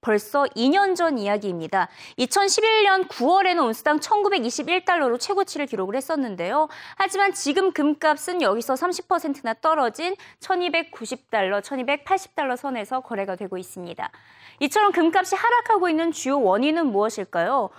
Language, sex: Korean, female